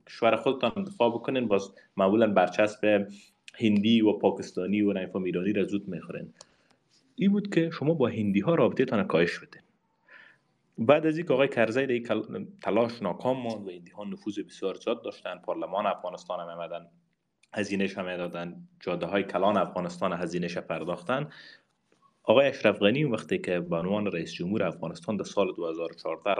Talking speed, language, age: 150 wpm, Persian, 30-49